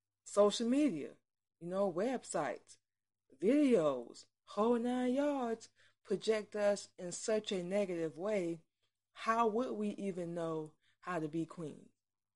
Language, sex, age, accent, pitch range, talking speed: English, female, 20-39, American, 155-190 Hz, 120 wpm